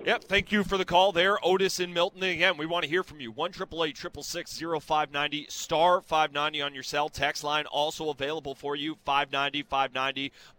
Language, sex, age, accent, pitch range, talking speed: English, male, 30-49, American, 140-170 Hz, 175 wpm